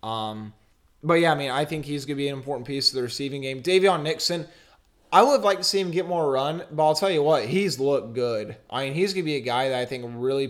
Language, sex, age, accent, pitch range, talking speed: English, male, 20-39, American, 120-140 Hz, 280 wpm